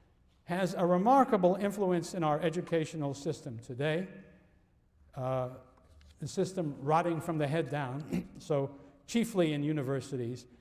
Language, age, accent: English, 60-79, American